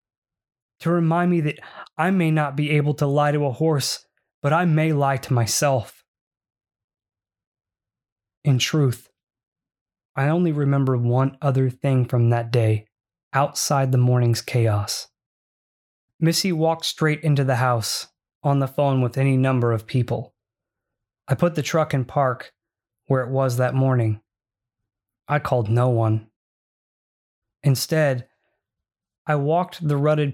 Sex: male